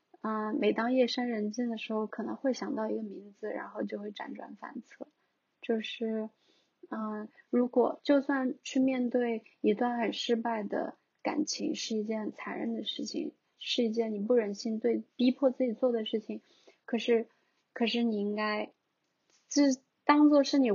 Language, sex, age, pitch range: Chinese, female, 20-39, 220-265 Hz